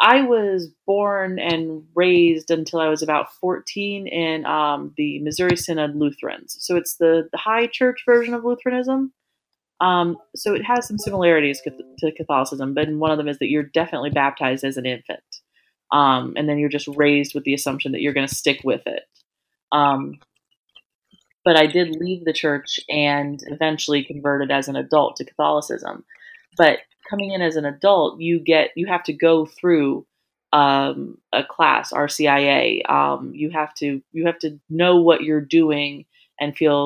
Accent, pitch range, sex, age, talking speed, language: American, 145-175 Hz, female, 30-49, 175 wpm, English